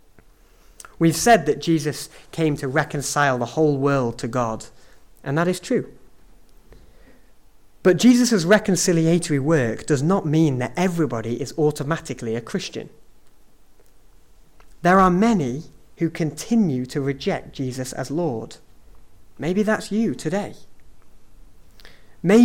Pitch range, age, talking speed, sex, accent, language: 125-170 Hz, 30-49, 120 wpm, male, British, English